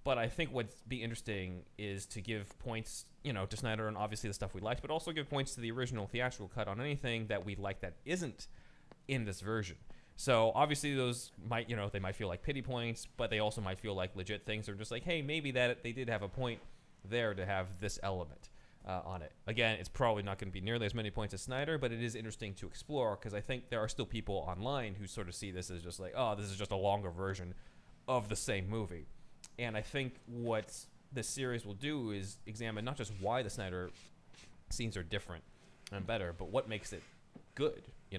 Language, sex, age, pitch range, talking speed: English, male, 30-49, 95-115 Hz, 235 wpm